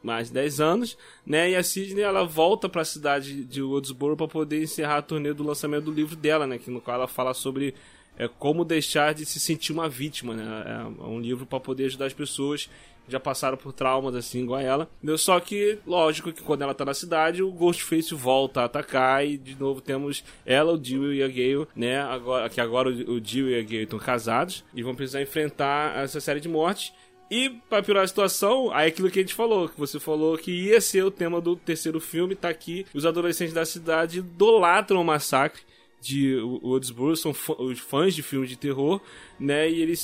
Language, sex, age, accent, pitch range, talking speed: Portuguese, male, 20-39, Brazilian, 135-170 Hz, 215 wpm